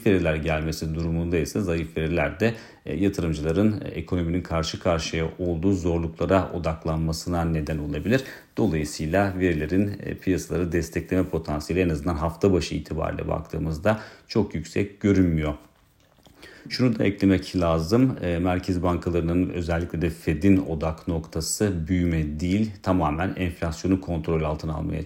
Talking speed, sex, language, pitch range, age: 120 wpm, male, Turkish, 80-95 Hz, 40-59